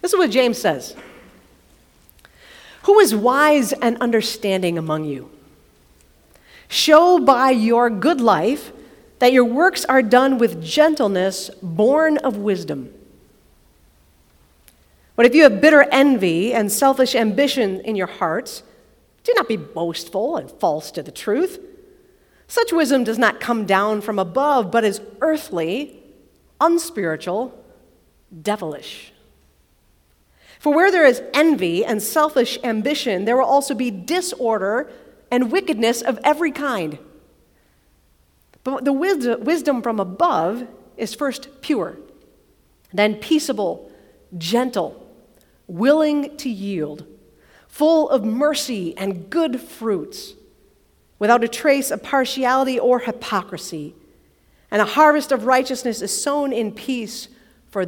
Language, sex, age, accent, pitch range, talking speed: English, female, 40-59, American, 190-285 Hz, 120 wpm